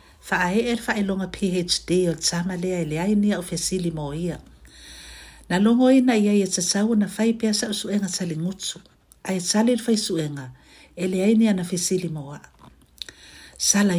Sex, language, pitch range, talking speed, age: female, English, 150-210 Hz, 140 wpm, 60-79